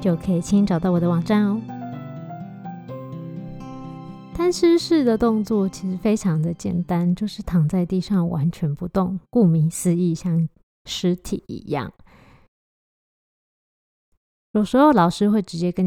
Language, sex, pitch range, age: Chinese, female, 175-215 Hz, 20-39